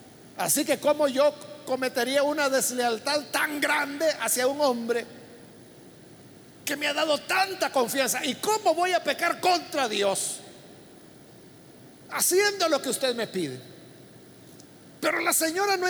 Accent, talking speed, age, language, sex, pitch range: Mexican, 130 wpm, 50-69, Spanish, male, 260-325 Hz